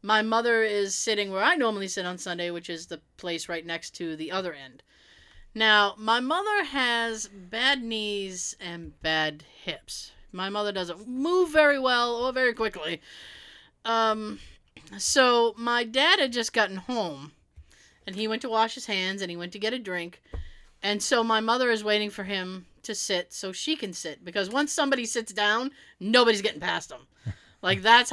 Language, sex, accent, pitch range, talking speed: English, female, American, 185-245 Hz, 180 wpm